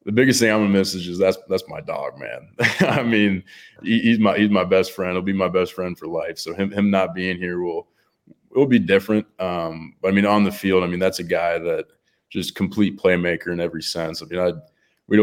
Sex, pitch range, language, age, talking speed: male, 90-105 Hz, English, 20-39, 250 wpm